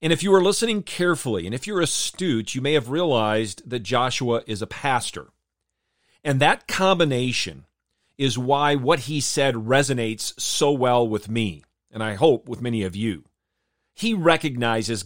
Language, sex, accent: English, male, American